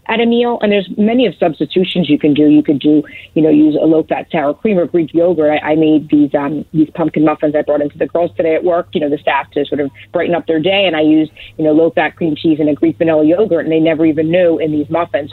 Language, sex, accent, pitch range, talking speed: English, female, American, 150-175 Hz, 280 wpm